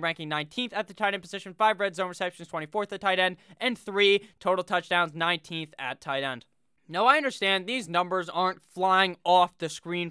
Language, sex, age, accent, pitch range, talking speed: English, male, 20-39, American, 175-215 Hz, 200 wpm